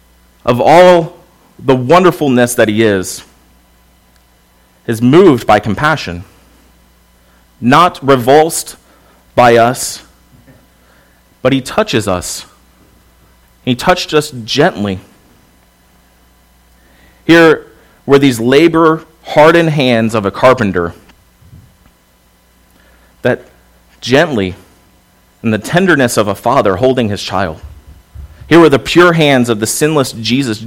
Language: English